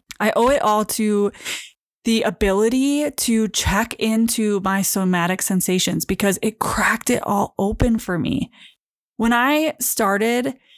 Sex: female